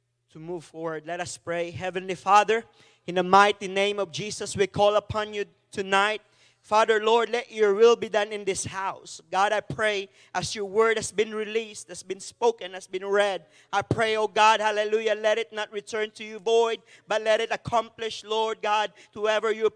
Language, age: English, 40-59